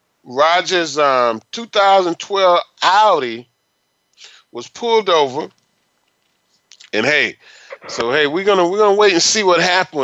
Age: 30-49